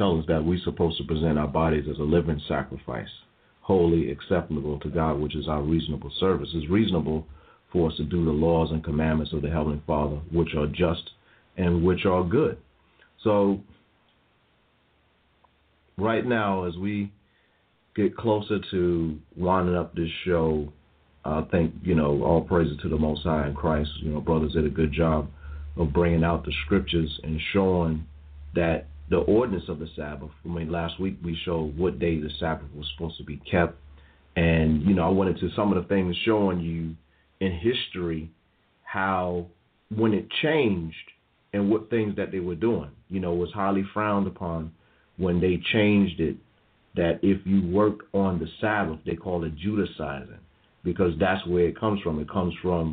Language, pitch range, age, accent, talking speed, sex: English, 75-95 Hz, 40-59, American, 175 wpm, male